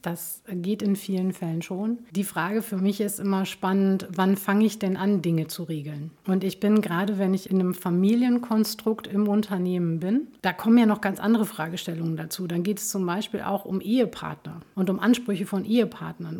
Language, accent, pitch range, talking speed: German, German, 175-205 Hz, 200 wpm